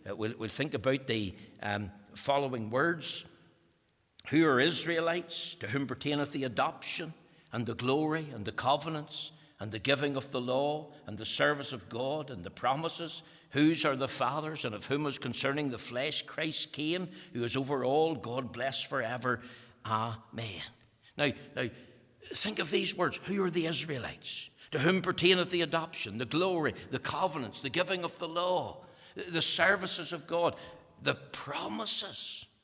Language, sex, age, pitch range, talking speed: English, male, 60-79, 130-185 Hz, 160 wpm